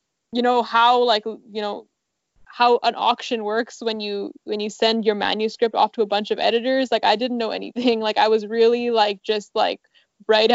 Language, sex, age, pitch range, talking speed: English, female, 10-29, 215-240 Hz, 205 wpm